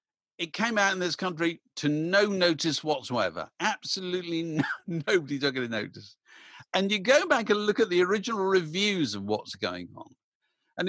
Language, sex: English, male